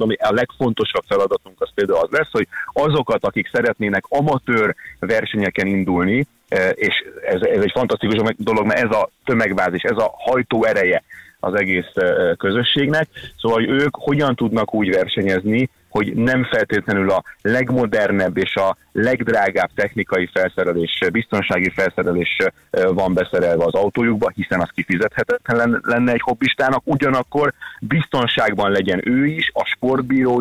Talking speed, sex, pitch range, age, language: 130 wpm, male, 100-140 Hz, 30-49, Hungarian